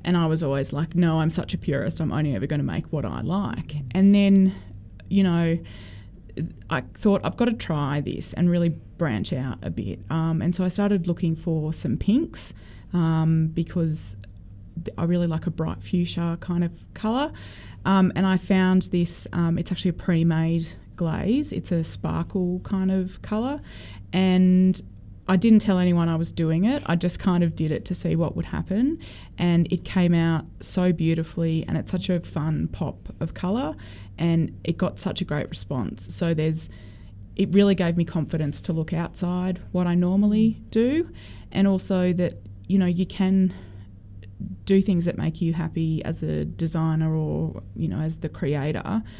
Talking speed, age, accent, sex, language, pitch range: 180 wpm, 20-39, Australian, female, English, 155-185 Hz